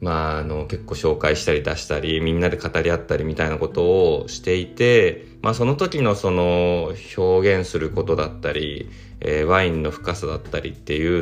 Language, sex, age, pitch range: Japanese, male, 20-39, 85-125 Hz